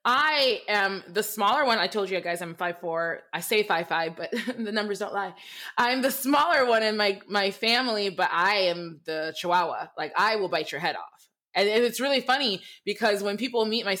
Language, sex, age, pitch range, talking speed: English, female, 20-39, 195-275 Hz, 215 wpm